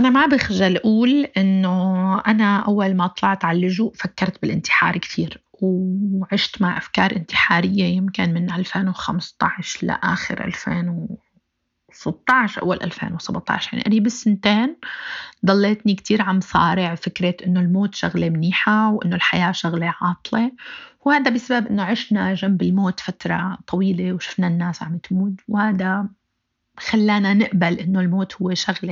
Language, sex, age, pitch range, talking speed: Arabic, female, 30-49, 185-225 Hz, 125 wpm